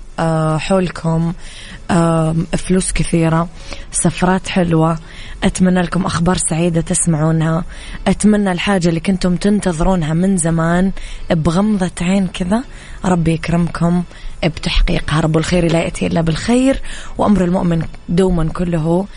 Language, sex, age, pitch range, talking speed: English, female, 20-39, 160-185 Hz, 105 wpm